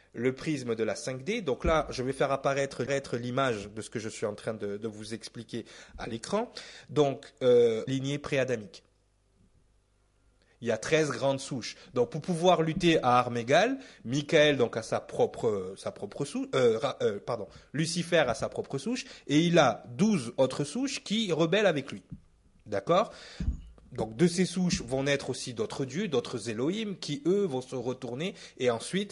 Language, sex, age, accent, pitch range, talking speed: French, male, 30-49, French, 120-170 Hz, 155 wpm